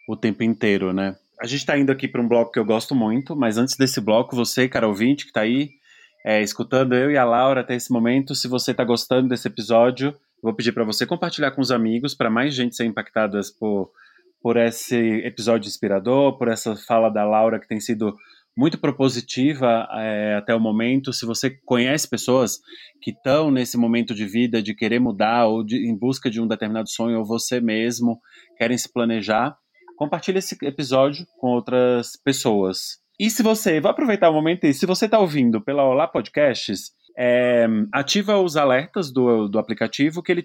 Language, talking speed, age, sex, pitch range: Portuguese, 195 wpm, 20-39, male, 115-145 Hz